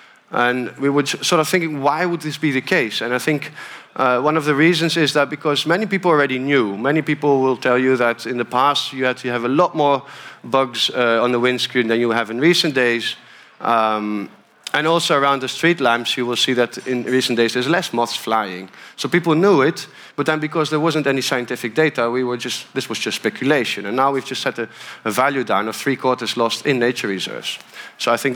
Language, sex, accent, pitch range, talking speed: Dutch, male, Dutch, 120-150 Hz, 235 wpm